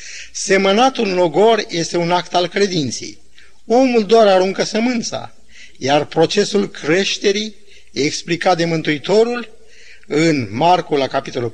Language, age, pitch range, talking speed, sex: Romanian, 50-69, 165-210 Hz, 115 wpm, male